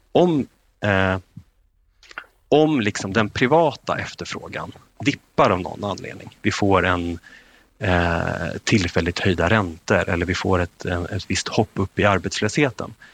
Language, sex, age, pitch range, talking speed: Swedish, male, 30-49, 95-120 Hz, 115 wpm